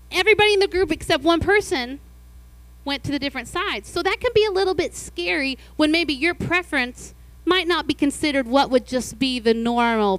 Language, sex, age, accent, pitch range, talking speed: English, female, 40-59, American, 210-305 Hz, 200 wpm